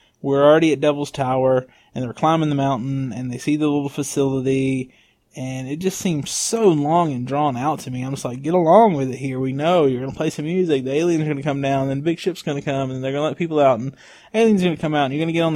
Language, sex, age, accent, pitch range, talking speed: English, male, 20-39, American, 130-150 Hz, 295 wpm